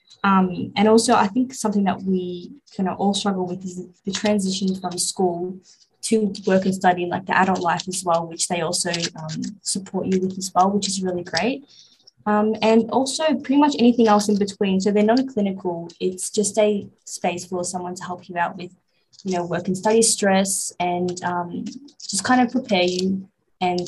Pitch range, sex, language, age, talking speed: 180-210 Hz, female, English, 20-39, 205 wpm